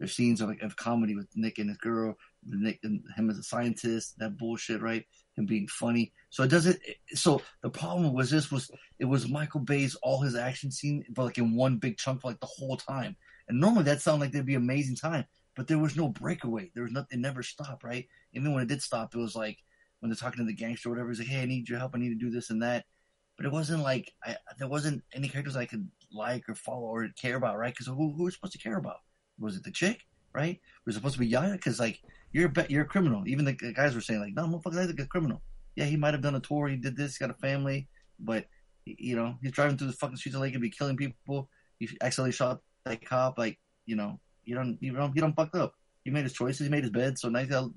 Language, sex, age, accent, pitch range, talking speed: English, male, 30-49, American, 120-150 Hz, 265 wpm